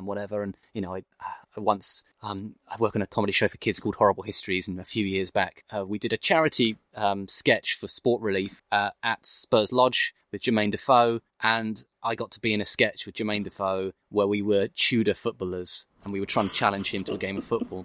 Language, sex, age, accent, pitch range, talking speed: English, male, 20-39, British, 100-130 Hz, 240 wpm